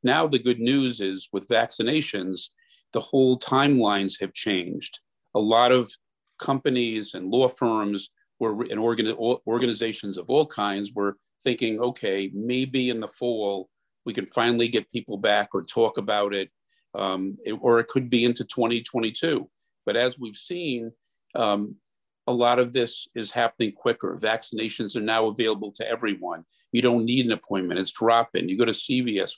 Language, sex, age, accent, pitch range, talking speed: English, male, 50-69, American, 110-125 Hz, 155 wpm